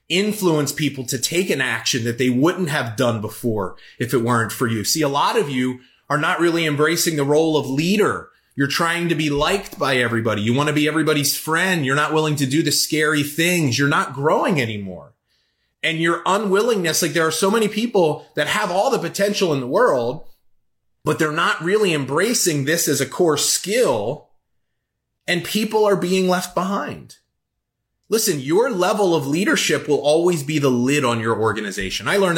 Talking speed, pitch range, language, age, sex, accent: 190 wpm, 135-175 Hz, English, 30-49, male, American